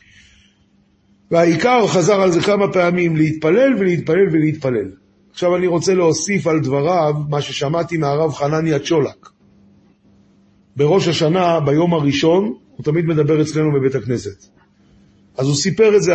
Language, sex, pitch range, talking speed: Hebrew, male, 145-195 Hz, 130 wpm